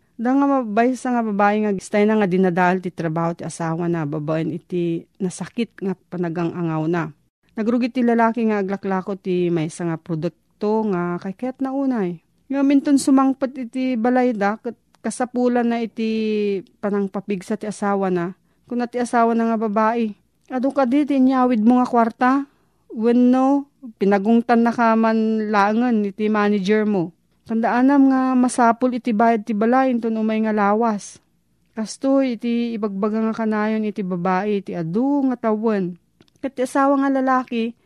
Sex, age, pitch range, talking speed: female, 40-59, 185-240 Hz, 155 wpm